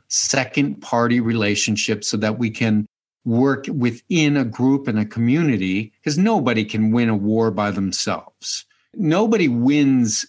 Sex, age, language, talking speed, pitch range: male, 50-69, English, 140 wpm, 115-150 Hz